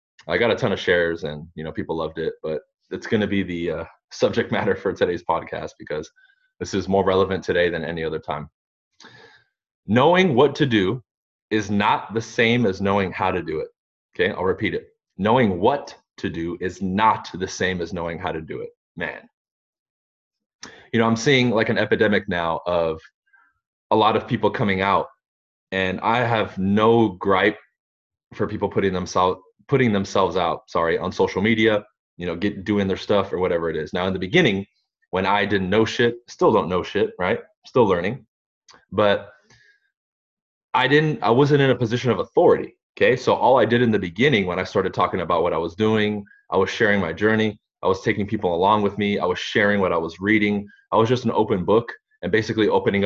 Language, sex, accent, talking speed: English, male, American, 200 wpm